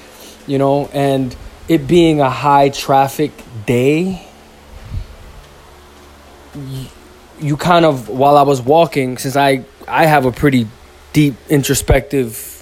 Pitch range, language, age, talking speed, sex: 125-150 Hz, English, 20-39, 115 wpm, male